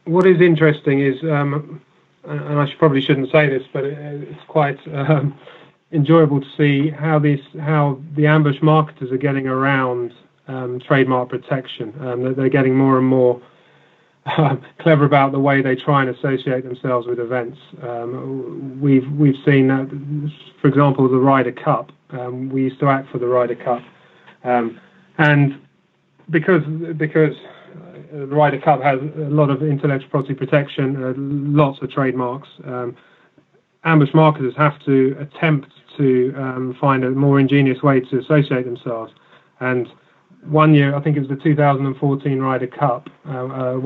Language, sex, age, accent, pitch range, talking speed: English, male, 30-49, British, 130-150 Hz, 165 wpm